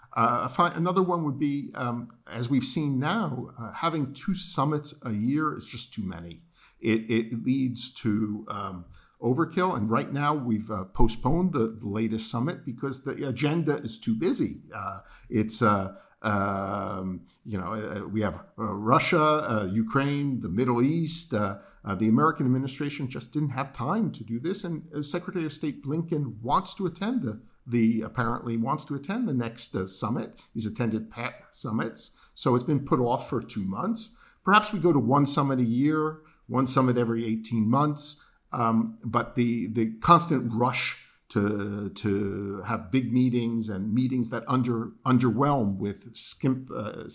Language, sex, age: English, male, 50-69